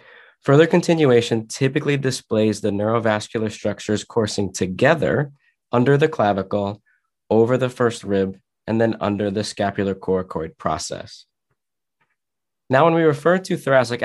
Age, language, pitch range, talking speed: 20-39, English, 105-135 Hz, 125 wpm